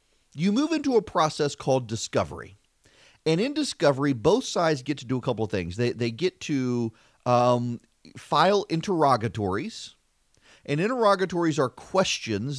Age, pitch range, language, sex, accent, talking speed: 40-59, 120-165 Hz, English, male, American, 145 wpm